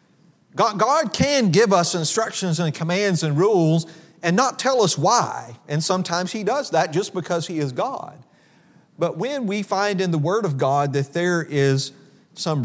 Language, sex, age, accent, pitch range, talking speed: English, male, 40-59, American, 145-185 Hz, 175 wpm